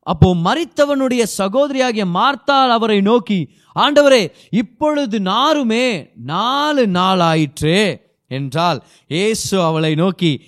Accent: native